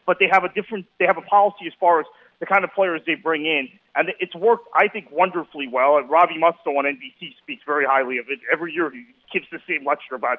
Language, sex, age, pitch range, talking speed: English, male, 40-59, 155-200 Hz, 255 wpm